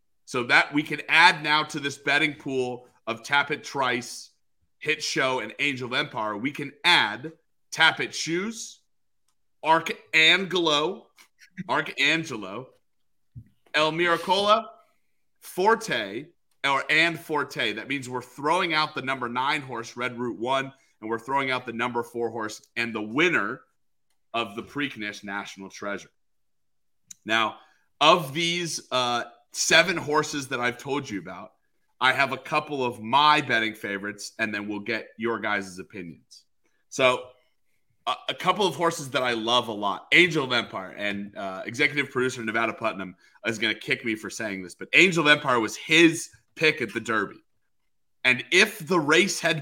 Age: 30-49